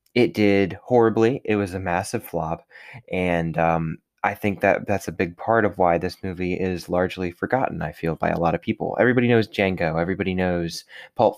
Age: 20-39